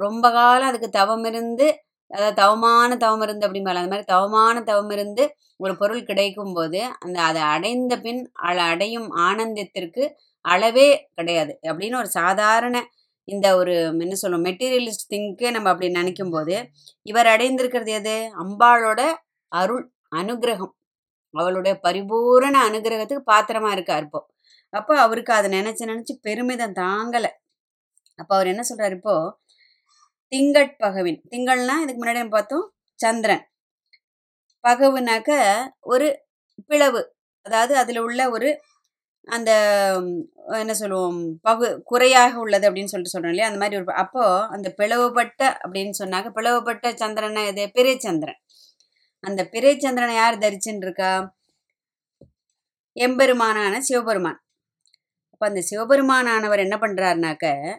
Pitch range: 195-245 Hz